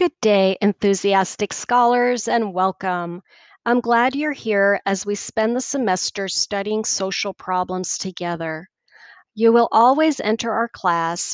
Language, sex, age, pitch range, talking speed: English, female, 40-59, 185-235 Hz, 130 wpm